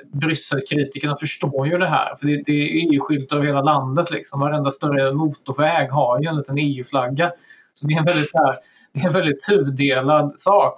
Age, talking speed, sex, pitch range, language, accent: 30-49, 165 wpm, male, 140-160 Hz, Swedish, native